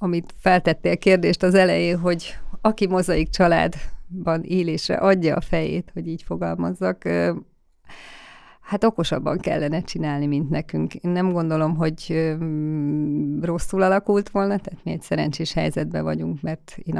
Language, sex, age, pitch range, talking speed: Hungarian, female, 30-49, 155-180 Hz, 130 wpm